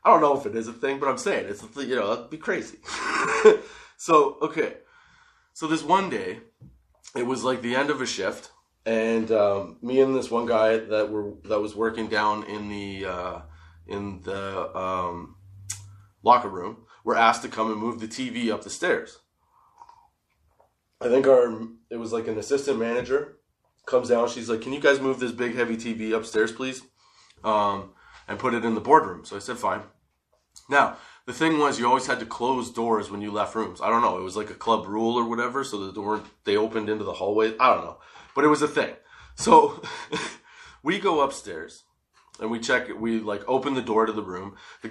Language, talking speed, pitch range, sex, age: English, 210 wpm, 105-140 Hz, male, 20-39